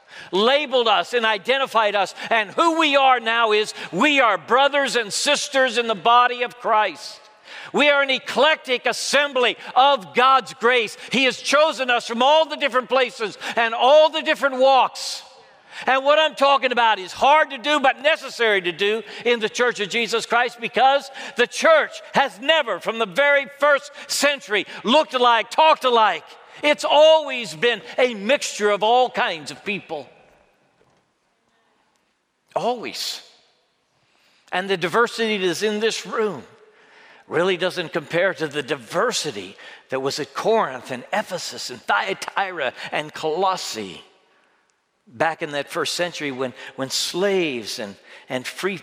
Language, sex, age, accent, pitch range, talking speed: English, male, 60-79, American, 180-270 Hz, 150 wpm